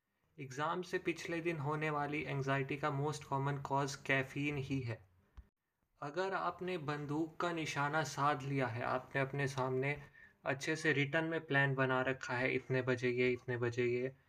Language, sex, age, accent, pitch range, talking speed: Hindi, male, 20-39, native, 120-145 Hz, 165 wpm